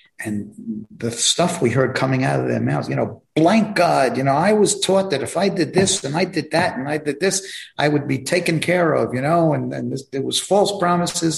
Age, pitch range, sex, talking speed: 50-69, 105-135 Hz, male, 250 wpm